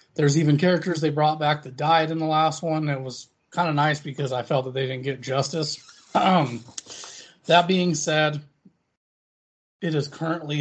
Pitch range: 135-165 Hz